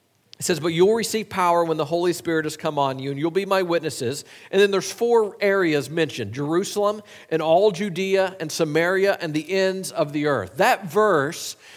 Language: English